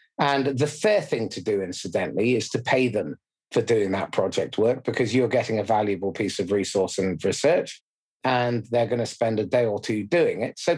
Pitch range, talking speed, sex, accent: 115-155 Hz, 210 wpm, male, British